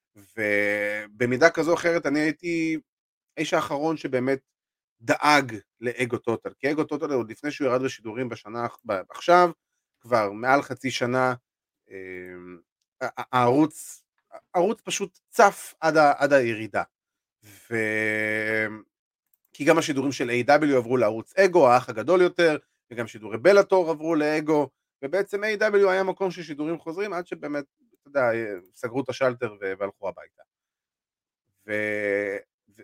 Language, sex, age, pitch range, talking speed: Hebrew, male, 30-49, 110-165 Hz, 120 wpm